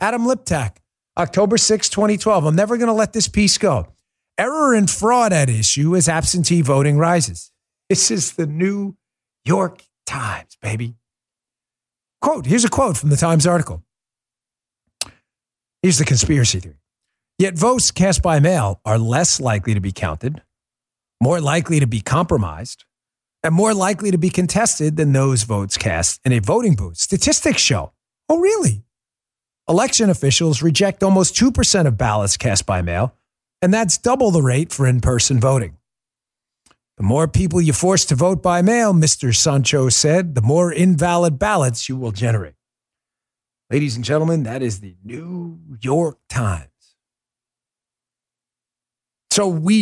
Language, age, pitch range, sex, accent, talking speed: English, 40-59, 120-180 Hz, male, American, 150 wpm